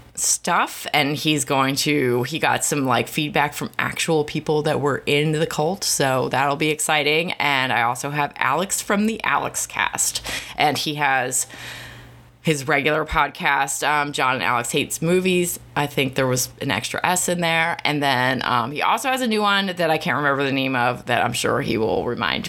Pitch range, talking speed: 135-170 Hz, 195 wpm